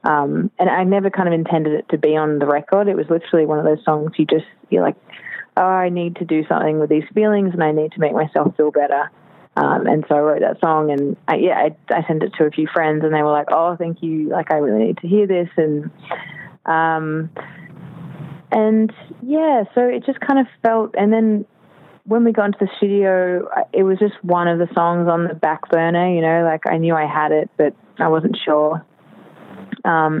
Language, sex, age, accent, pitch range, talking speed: English, female, 20-39, Australian, 155-195 Hz, 230 wpm